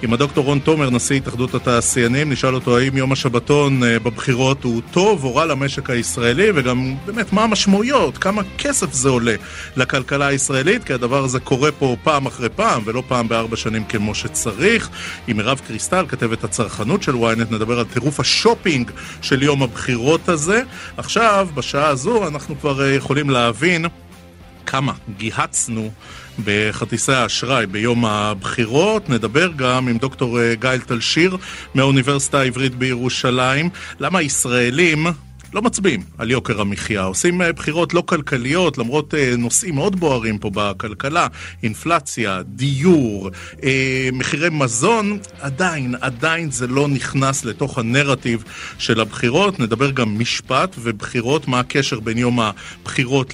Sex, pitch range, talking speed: male, 120-155 Hz, 135 wpm